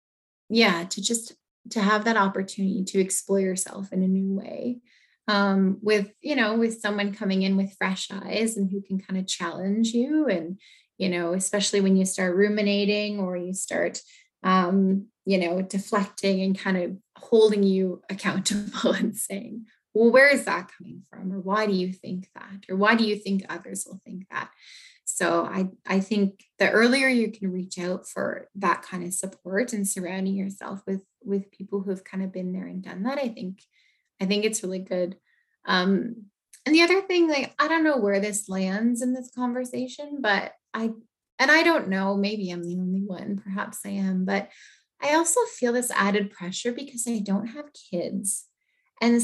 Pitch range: 190-230 Hz